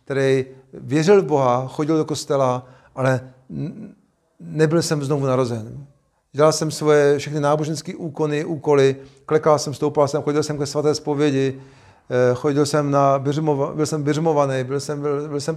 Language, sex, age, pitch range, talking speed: Czech, male, 40-59, 130-150 Hz, 140 wpm